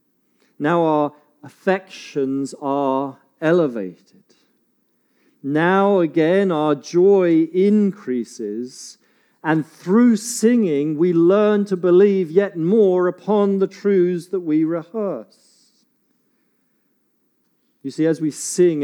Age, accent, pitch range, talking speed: 40-59, British, 120-170 Hz, 95 wpm